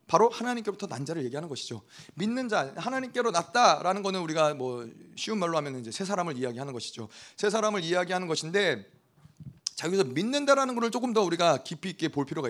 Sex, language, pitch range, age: male, Korean, 150-220 Hz, 30-49